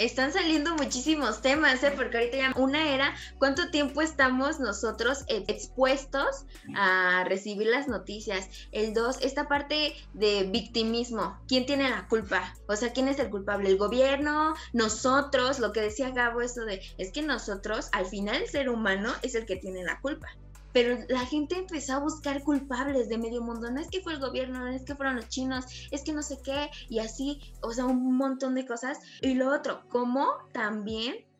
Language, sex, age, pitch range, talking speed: Spanish, female, 20-39, 205-275 Hz, 185 wpm